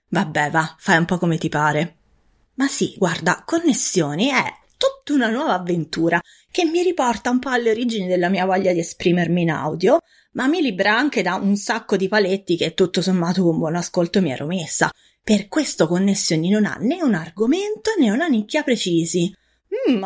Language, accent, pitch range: Italian, native, 180-240 Hz